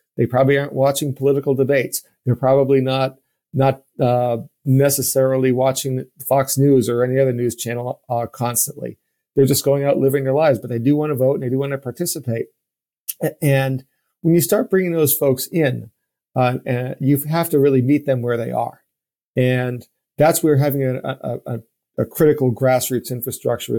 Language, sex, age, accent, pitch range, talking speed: English, male, 50-69, American, 120-140 Hz, 180 wpm